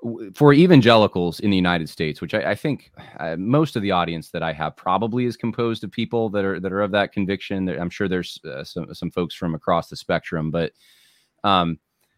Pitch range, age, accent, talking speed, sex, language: 85-115 Hz, 30-49, American, 205 wpm, male, English